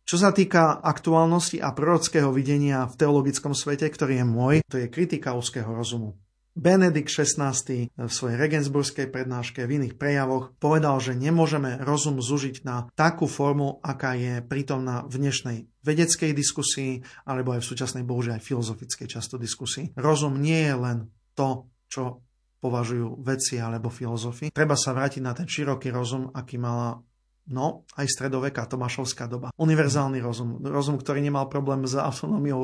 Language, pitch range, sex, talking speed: Slovak, 125-145 Hz, male, 155 wpm